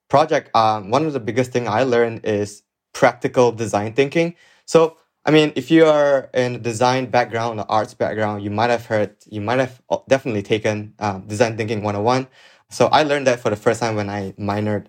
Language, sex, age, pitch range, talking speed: English, male, 20-39, 105-125 Hz, 200 wpm